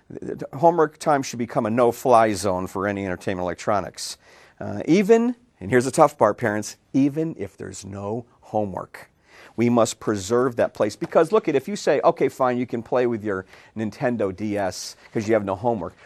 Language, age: English, 50-69